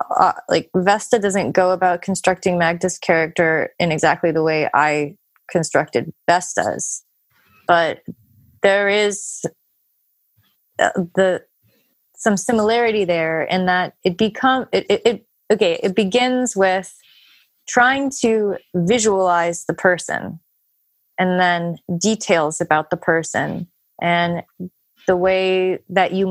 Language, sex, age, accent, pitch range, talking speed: English, female, 30-49, American, 170-195 Hz, 115 wpm